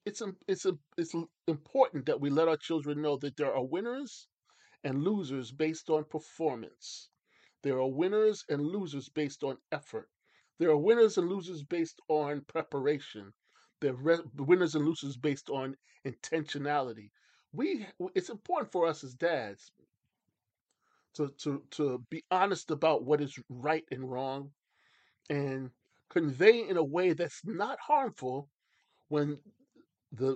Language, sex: English, male